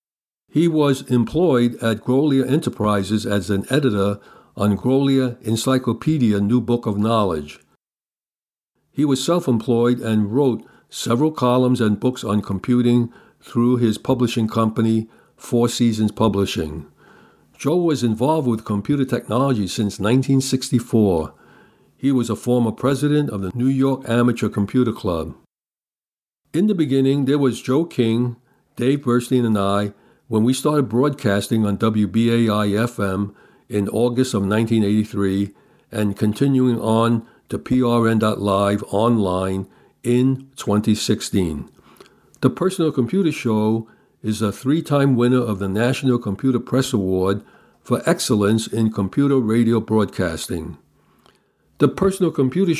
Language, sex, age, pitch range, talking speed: English, male, 60-79, 105-130 Hz, 120 wpm